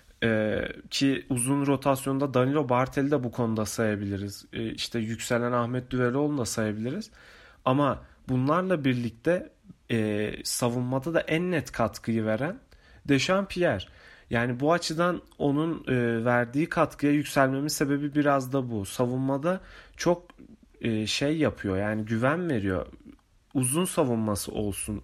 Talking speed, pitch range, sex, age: 110 wpm, 115-150 Hz, male, 30-49